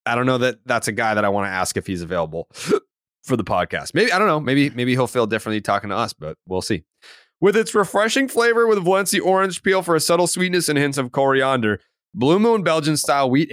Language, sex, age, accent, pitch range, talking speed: English, male, 30-49, American, 110-185 Hz, 240 wpm